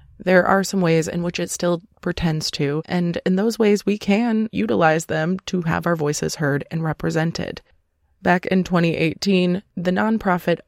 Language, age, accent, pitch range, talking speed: English, 20-39, American, 155-185 Hz, 170 wpm